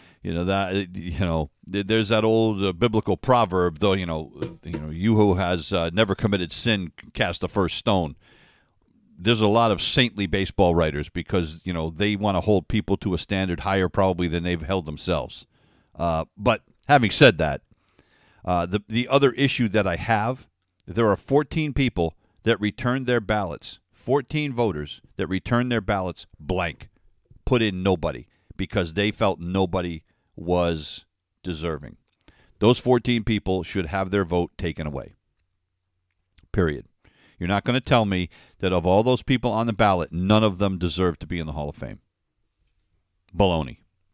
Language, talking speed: English, 170 wpm